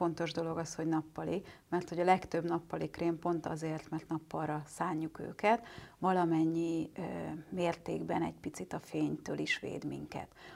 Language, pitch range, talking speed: Hungarian, 165-185 Hz, 155 wpm